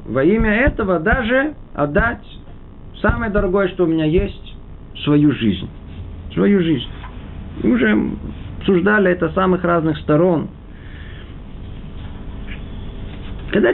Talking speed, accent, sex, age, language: 105 wpm, native, male, 50-69, Russian